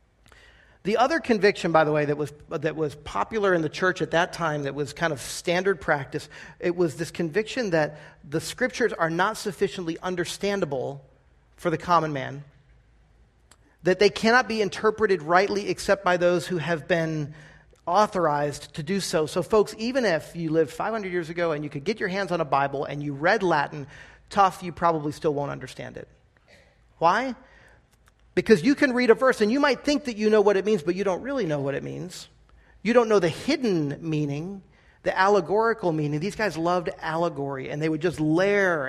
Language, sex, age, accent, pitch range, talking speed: English, male, 40-59, American, 155-195 Hz, 195 wpm